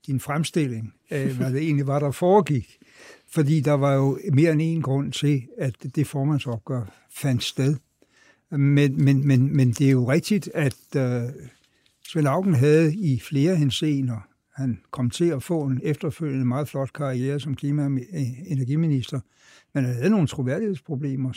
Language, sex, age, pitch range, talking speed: Danish, male, 60-79, 135-160 Hz, 165 wpm